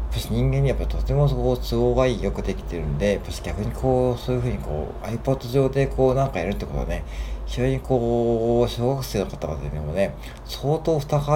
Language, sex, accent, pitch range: Japanese, male, native, 85-125 Hz